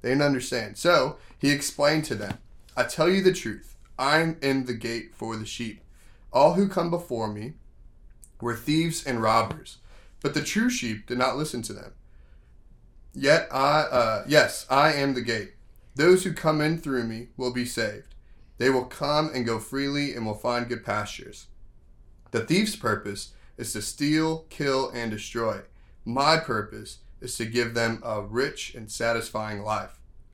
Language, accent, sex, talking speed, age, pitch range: English, American, male, 170 wpm, 30-49, 110-135 Hz